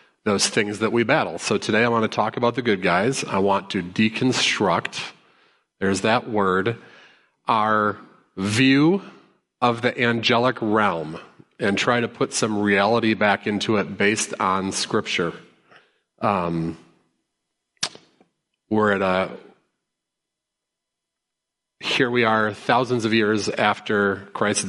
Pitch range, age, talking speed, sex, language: 95-120 Hz, 40-59, 125 wpm, male, English